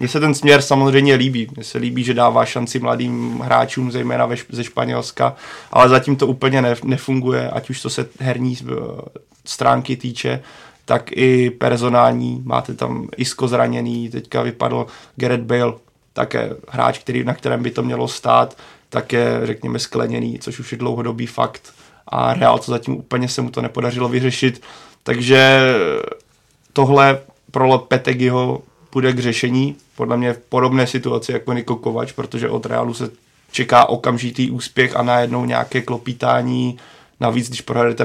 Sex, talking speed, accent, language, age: male, 150 wpm, native, Czech, 20-39